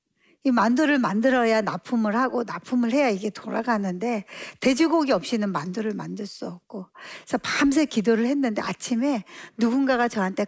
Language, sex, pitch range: Korean, female, 210-275 Hz